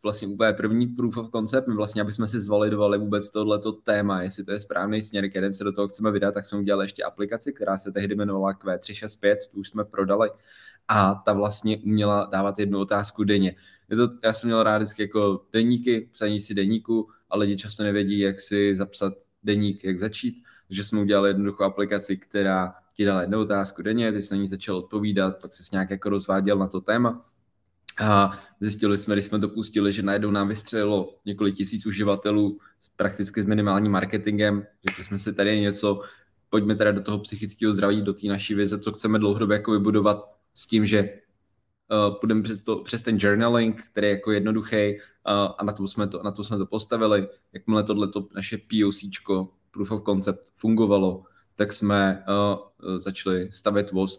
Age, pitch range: 20-39, 100-105 Hz